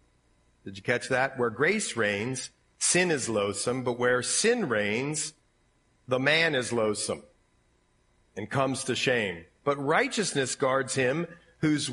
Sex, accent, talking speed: male, American, 135 wpm